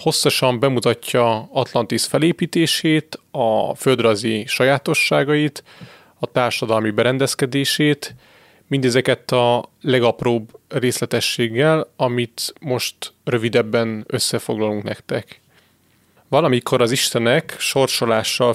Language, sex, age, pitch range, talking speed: Hungarian, male, 30-49, 115-140 Hz, 75 wpm